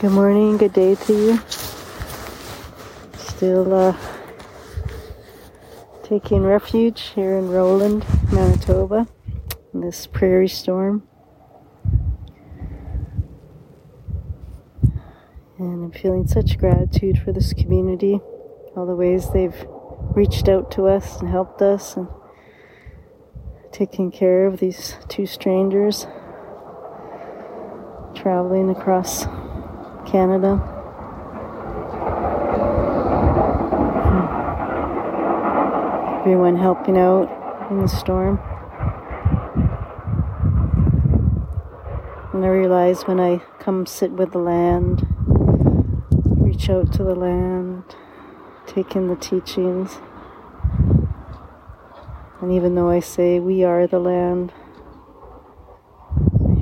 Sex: female